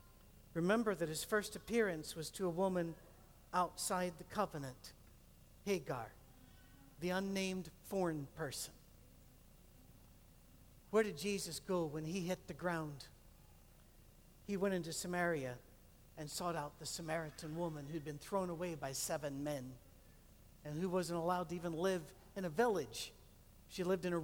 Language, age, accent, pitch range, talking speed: English, 60-79, American, 155-210 Hz, 140 wpm